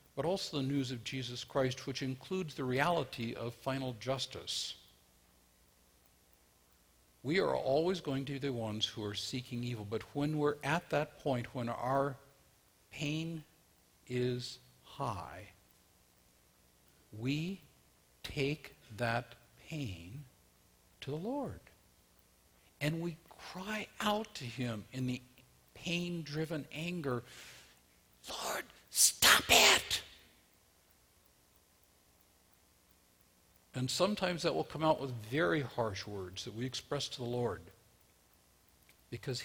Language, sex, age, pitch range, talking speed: English, male, 60-79, 85-140 Hz, 110 wpm